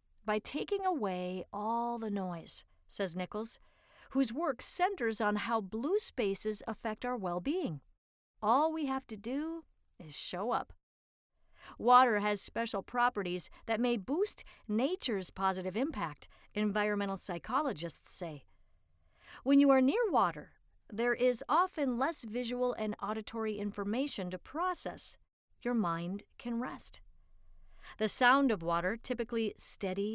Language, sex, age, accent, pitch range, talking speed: English, female, 50-69, American, 185-245 Hz, 125 wpm